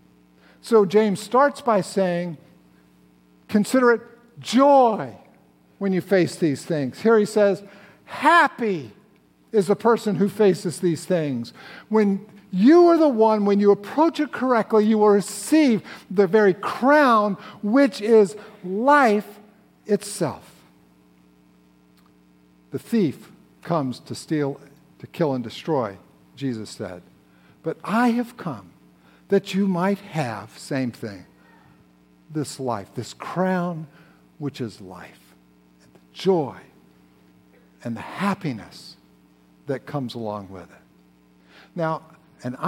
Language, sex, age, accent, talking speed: English, male, 50-69, American, 120 wpm